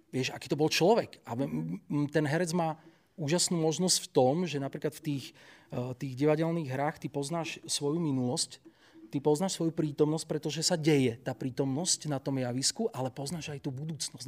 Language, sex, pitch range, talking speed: Slovak, male, 135-165 Hz, 170 wpm